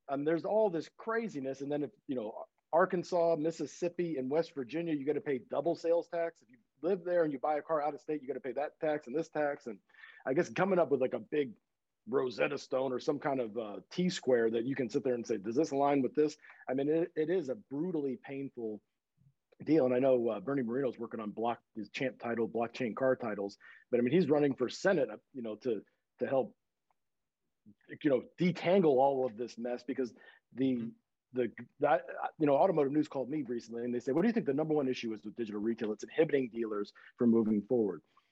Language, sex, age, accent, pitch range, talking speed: English, male, 40-59, American, 125-160 Hz, 230 wpm